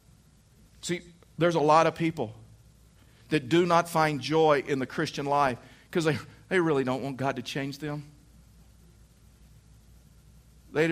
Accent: American